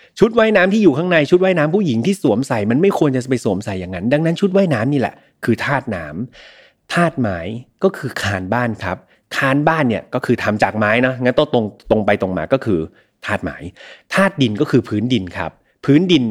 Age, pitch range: 30-49, 110-160 Hz